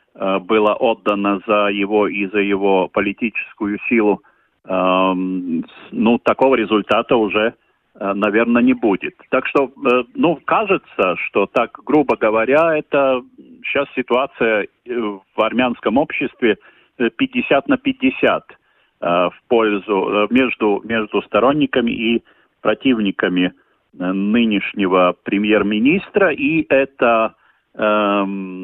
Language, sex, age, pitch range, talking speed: Russian, male, 40-59, 95-125 Hz, 95 wpm